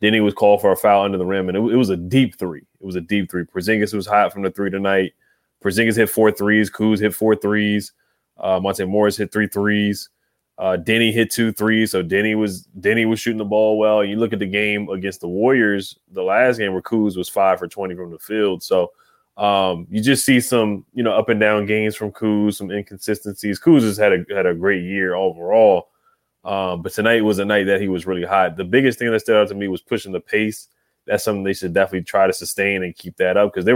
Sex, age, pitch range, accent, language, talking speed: male, 20-39, 95-110 Hz, American, English, 245 wpm